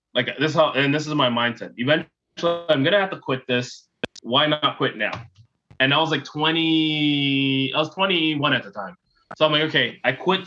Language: English